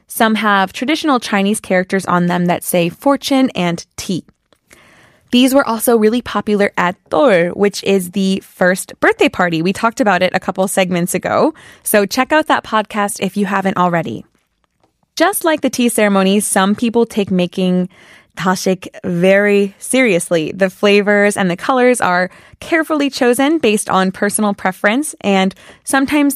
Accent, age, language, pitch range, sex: American, 20-39, Korean, 190-245 Hz, female